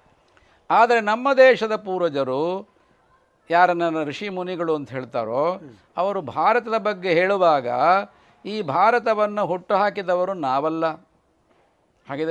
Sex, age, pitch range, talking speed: male, 50-69, 165-210 Hz, 95 wpm